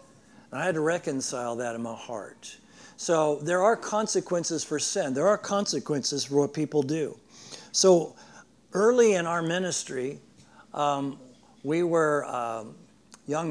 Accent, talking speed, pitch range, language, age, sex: American, 140 wpm, 130-165 Hz, English, 60-79, male